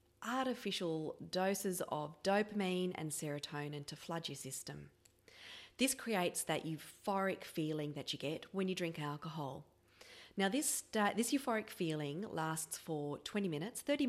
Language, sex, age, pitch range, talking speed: English, female, 30-49, 155-205 Hz, 140 wpm